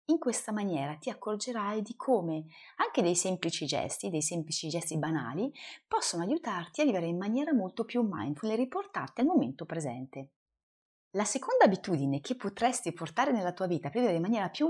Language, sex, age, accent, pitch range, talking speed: Italian, female, 30-49, native, 160-245 Hz, 175 wpm